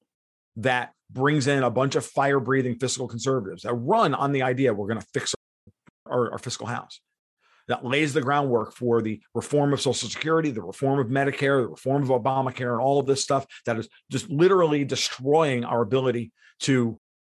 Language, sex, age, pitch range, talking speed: English, male, 40-59, 120-145 Hz, 190 wpm